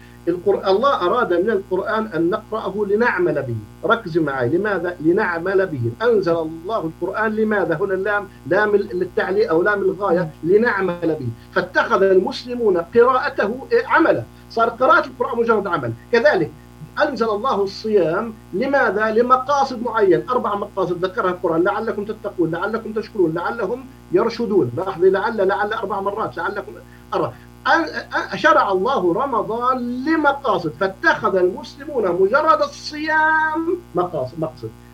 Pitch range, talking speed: 175-250 Hz, 120 wpm